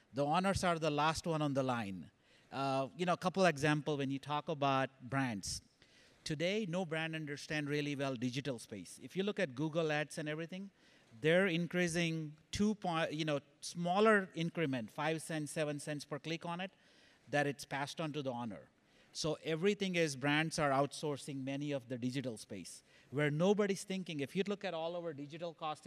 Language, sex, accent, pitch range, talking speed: English, male, Indian, 145-175 Hz, 190 wpm